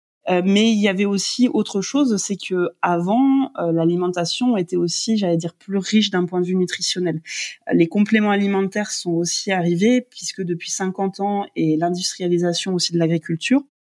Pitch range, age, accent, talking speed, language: 170-205 Hz, 20-39, French, 165 wpm, French